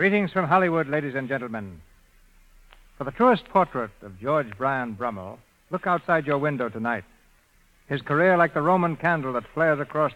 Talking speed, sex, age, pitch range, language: 165 wpm, male, 60-79, 120-160 Hz, English